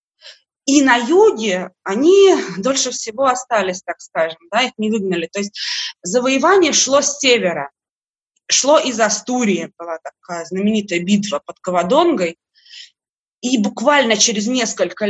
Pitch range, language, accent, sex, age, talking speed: 195-265 Hz, Russian, native, female, 20-39, 125 wpm